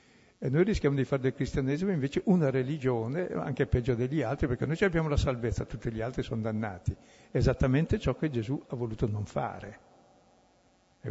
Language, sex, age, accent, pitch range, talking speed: Italian, male, 60-79, native, 110-140 Hz, 180 wpm